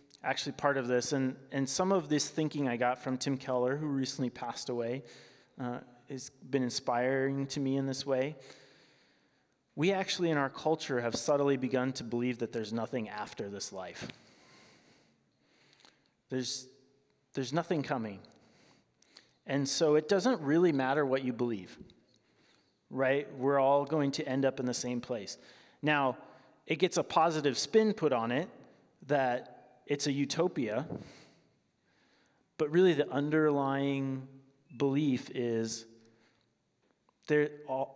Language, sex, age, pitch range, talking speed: English, male, 30-49, 120-145 Hz, 140 wpm